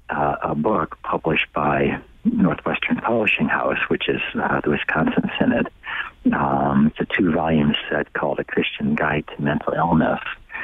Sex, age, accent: male, 50-69, American